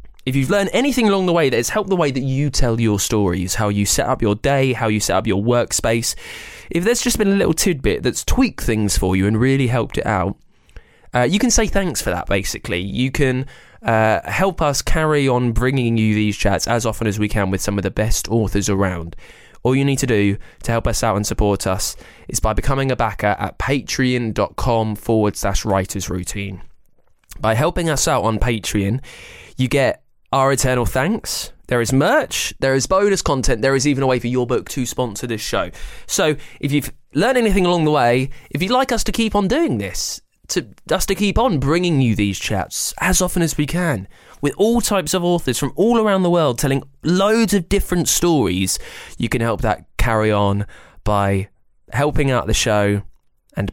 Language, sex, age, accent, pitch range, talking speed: English, male, 20-39, British, 105-150 Hz, 210 wpm